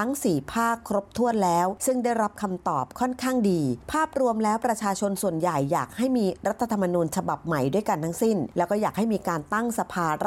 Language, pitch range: Thai, 170-225 Hz